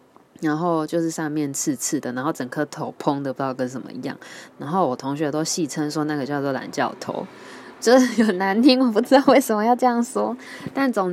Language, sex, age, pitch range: Chinese, female, 20-39, 145-190 Hz